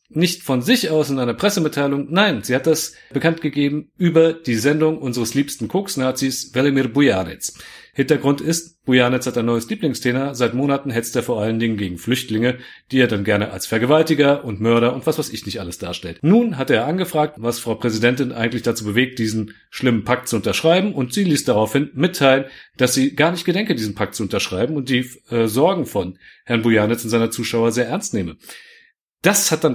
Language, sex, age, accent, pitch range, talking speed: German, male, 40-59, German, 115-150 Hz, 195 wpm